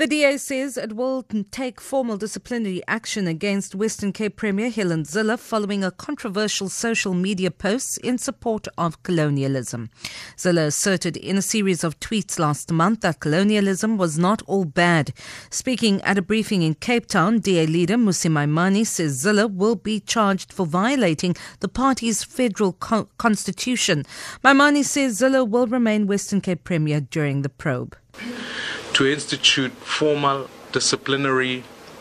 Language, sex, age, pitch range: English, female, 40-59, 140-215 Hz